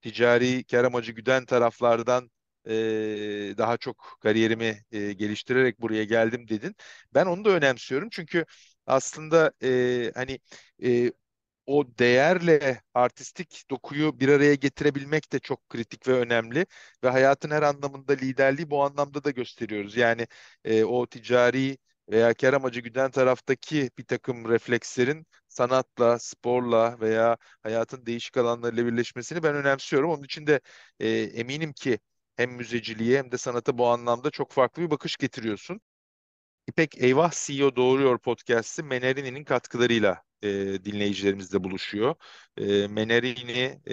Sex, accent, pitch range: male, native, 110-135 Hz